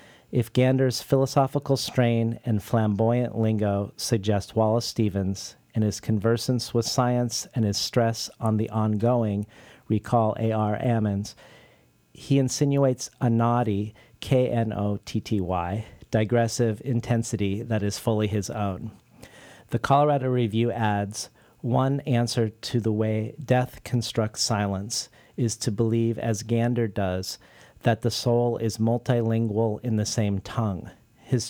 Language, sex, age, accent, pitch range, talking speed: English, male, 40-59, American, 105-120 Hz, 120 wpm